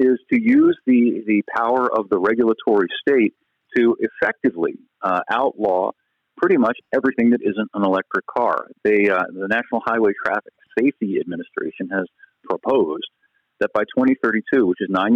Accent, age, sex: American, 40-59, male